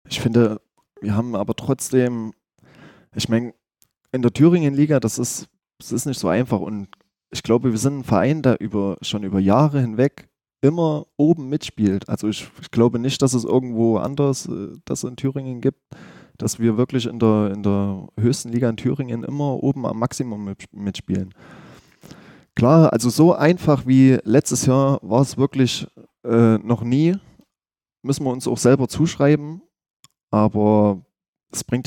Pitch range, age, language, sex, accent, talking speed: 105-130 Hz, 20-39, German, male, German, 155 wpm